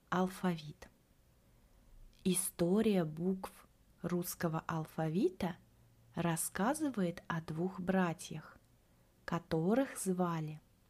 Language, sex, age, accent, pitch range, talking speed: Russian, female, 20-39, native, 165-205 Hz, 60 wpm